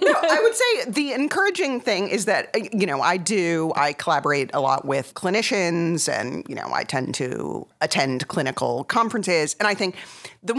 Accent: American